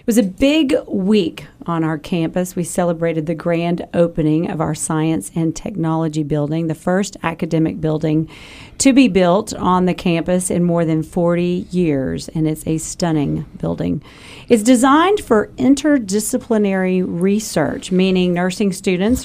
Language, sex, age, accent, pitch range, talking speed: English, female, 40-59, American, 160-195 Hz, 145 wpm